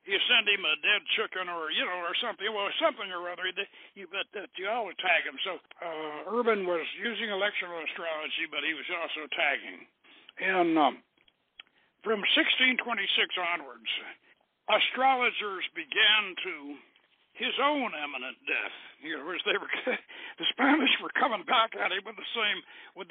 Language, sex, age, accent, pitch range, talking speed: English, male, 60-79, American, 180-260 Hz, 160 wpm